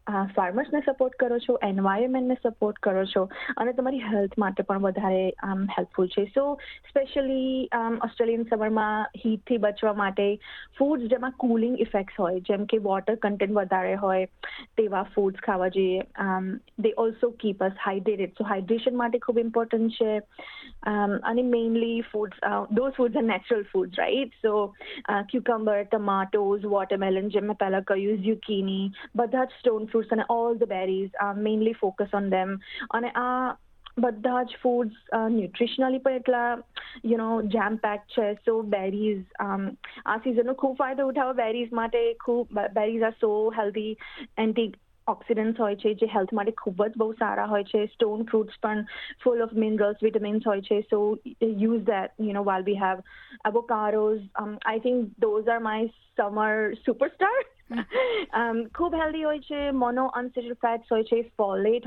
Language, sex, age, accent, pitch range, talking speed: Gujarati, female, 20-39, native, 205-245 Hz, 150 wpm